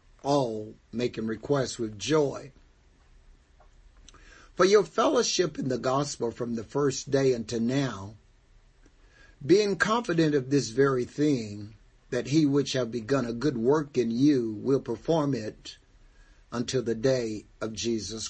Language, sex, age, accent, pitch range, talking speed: English, male, 50-69, American, 110-145 Hz, 135 wpm